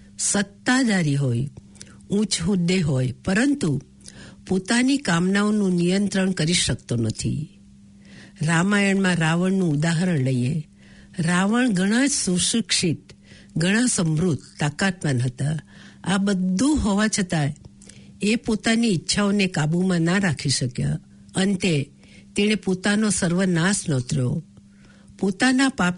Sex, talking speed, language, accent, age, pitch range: female, 80 wpm, English, Indian, 60-79, 150-205 Hz